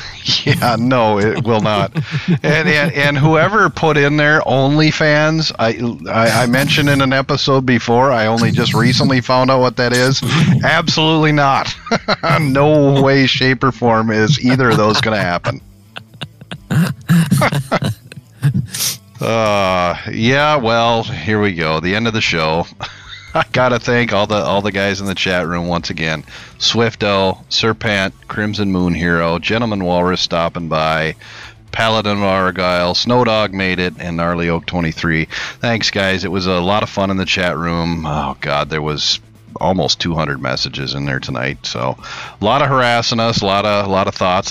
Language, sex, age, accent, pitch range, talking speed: English, male, 40-59, American, 85-125 Hz, 165 wpm